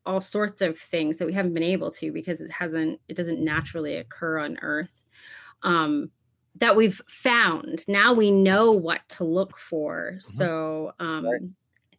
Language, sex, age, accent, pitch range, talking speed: English, female, 30-49, American, 165-195 Hz, 165 wpm